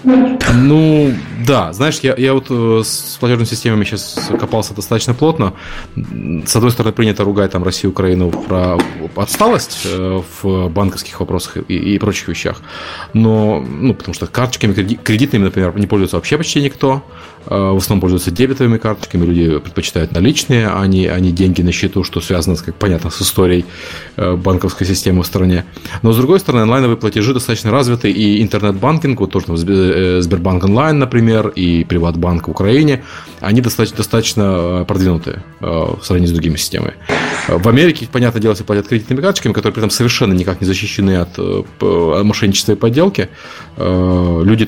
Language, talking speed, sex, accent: Russian, 160 wpm, male, native